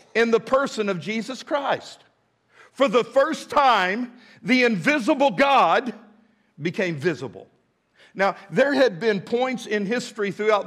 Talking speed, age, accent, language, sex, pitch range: 130 wpm, 50-69, American, English, male, 190-230 Hz